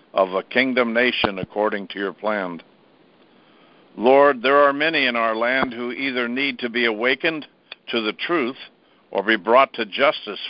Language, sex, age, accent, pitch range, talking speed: English, male, 60-79, American, 105-125 Hz, 165 wpm